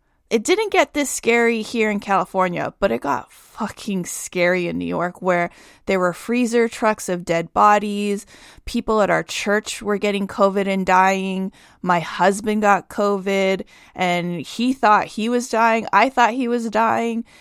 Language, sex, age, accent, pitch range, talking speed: English, female, 20-39, American, 190-240 Hz, 165 wpm